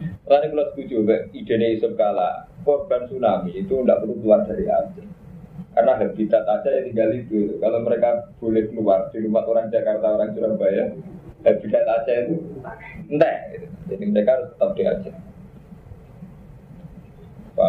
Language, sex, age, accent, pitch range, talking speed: Indonesian, male, 20-39, native, 115-175 Hz, 140 wpm